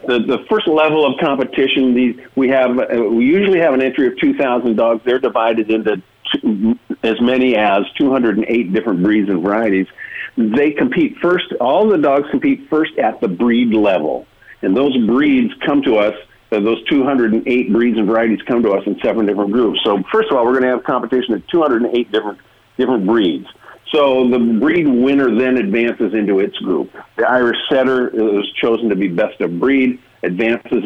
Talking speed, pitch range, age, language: 185 wpm, 110-155 Hz, 50-69, English